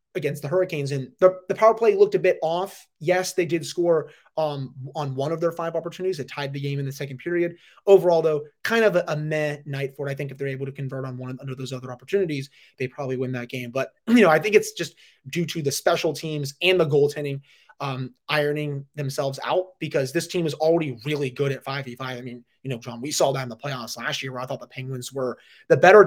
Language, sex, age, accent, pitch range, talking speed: English, male, 20-39, American, 130-160 Hz, 250 wpm